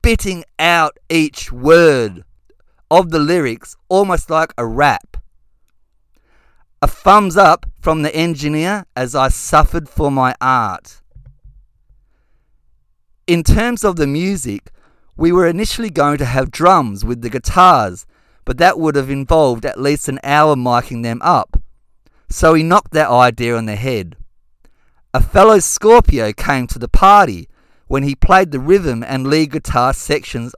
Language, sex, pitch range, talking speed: English, male, 125-170 Hz, 145 wpm